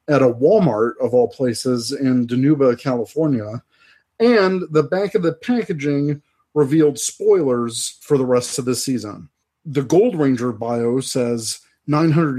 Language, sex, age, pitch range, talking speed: English, male, 40-59, 125-155 Hz, 140 wpm